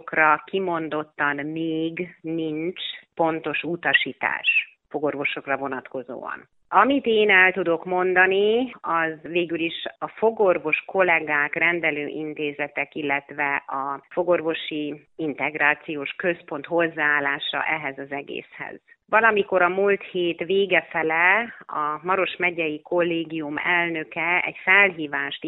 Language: Hungarian